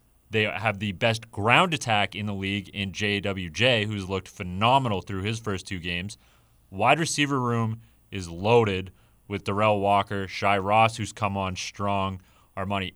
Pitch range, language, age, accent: 100-125 Hz, English, 30-49, American